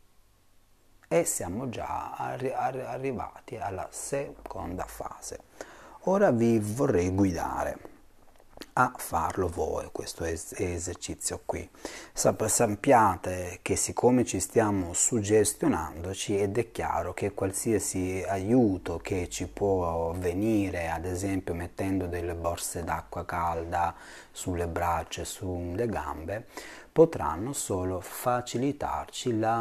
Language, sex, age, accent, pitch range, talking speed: Italian, male, 30-49, native, 85-105 Hz, 105 wpm